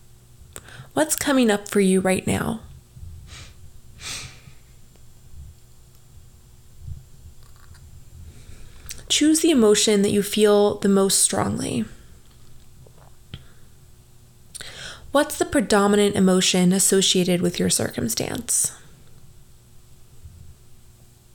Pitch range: 180-220 Hz